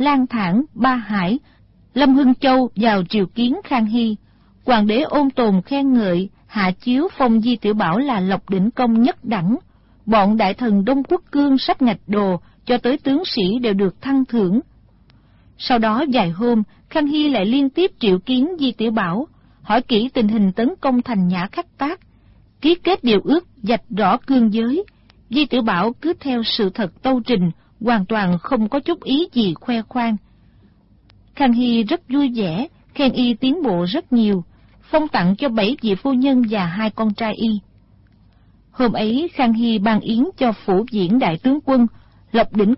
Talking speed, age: 190 wpm, 40-59